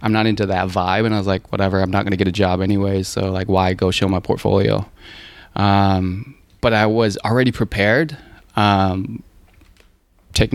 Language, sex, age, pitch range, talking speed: English, male, 20-39, 95-115 Hz, 190 wpm